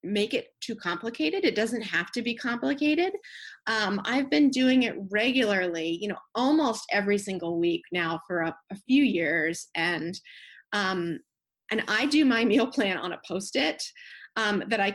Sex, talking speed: female, 165 wpm